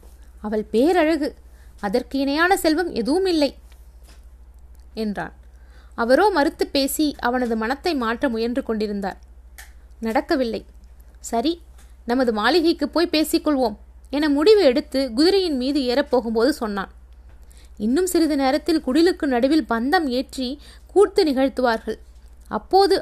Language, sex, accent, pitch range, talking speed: Tamil, female, native, 200-305 Hz, 100 wpm